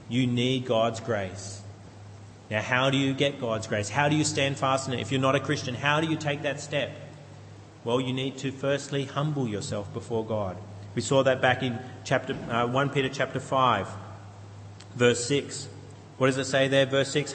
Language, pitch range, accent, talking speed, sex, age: English, 110-135 Hz, Australian, 200 wpm, male, 30-49